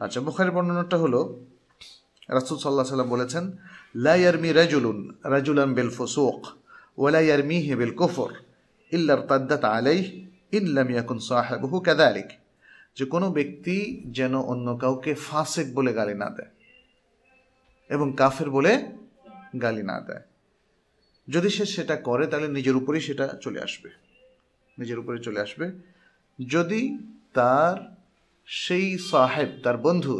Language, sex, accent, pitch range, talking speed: Bengali, male, native, 130-190 Hz, 75 wpm